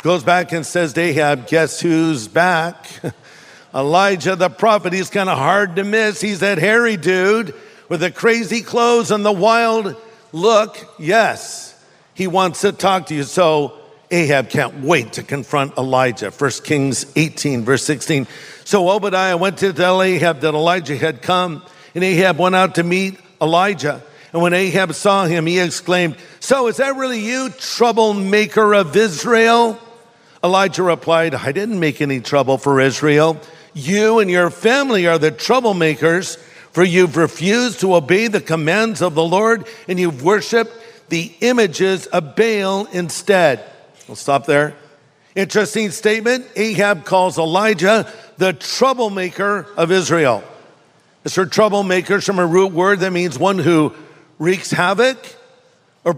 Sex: male